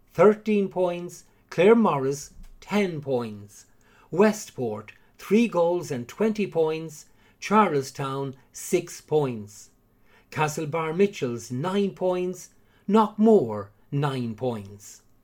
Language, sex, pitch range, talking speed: English, male, 125-185 Hz, 85 wpm